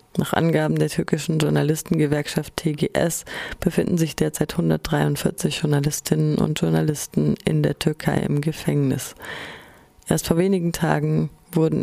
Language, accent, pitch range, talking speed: German, German, 145-170 Hz, 115 wpm